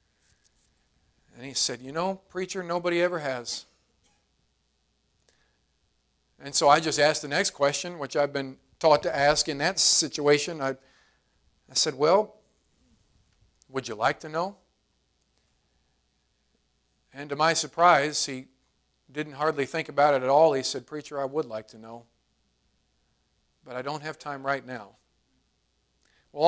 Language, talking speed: English, 145 wpm